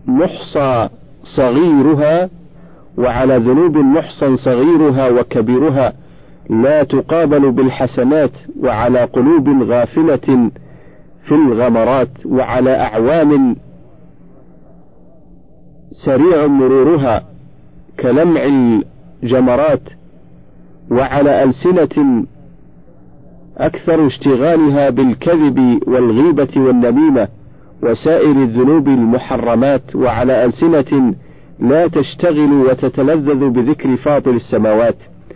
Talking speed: 65 wpm